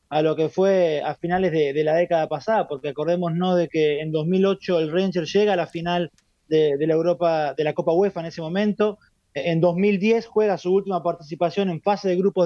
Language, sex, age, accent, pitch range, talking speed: Spanish, male, 20-39, Argentinian, 165-205 Hz, 215 wpm